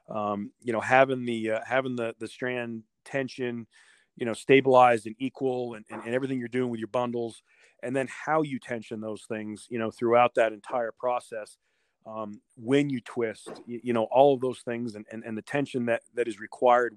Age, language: 40-59, English